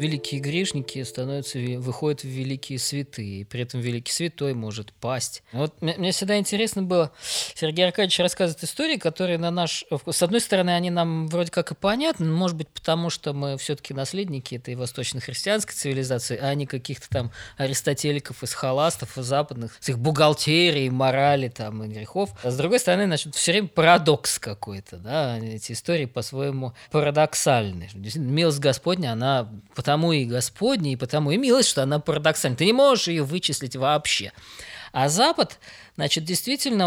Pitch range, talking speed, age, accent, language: 130-185 Hz, 160 wpm, 20-39, native, Russian